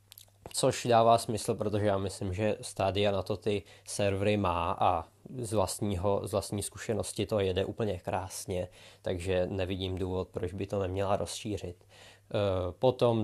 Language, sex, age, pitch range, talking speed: Czech, male, 20-39, 95-105 Hz, 145 wpm